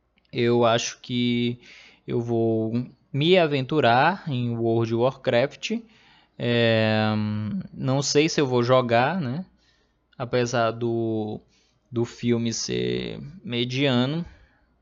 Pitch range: 115-140 Hz